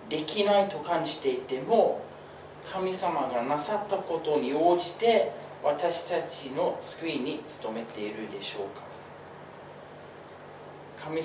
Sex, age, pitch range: male, 40-59, 145-190 Hz